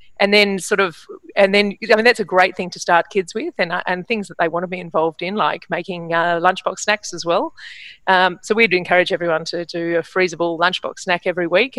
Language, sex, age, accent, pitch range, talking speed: English, female, 30-49, Australian, 175-200 Hz, 235 wpm